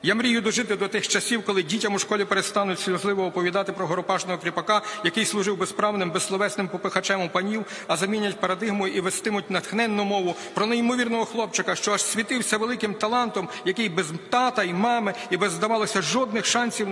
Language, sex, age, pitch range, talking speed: Ukrainian, male, 50-69, 190-225 Hz, 170 wpm